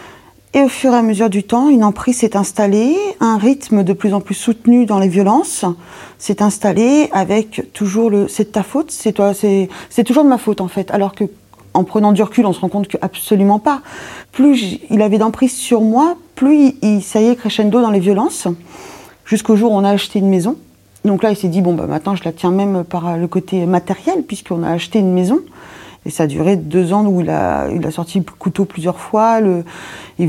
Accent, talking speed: French, 235 wpm